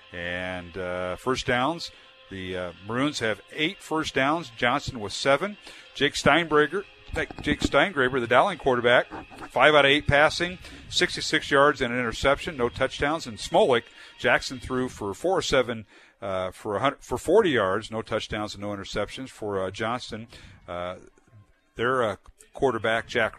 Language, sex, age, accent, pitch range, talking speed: English, male, 50-69, American, 105-135 Hz, 150 wpm